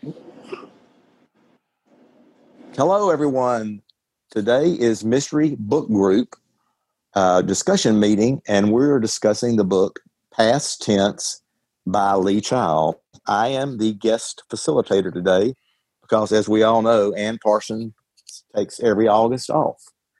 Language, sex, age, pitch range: English, male, 50-69, 100-130 Hz